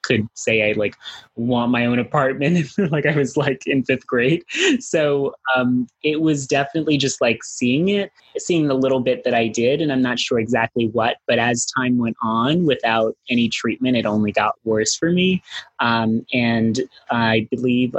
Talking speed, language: 185 wpm, English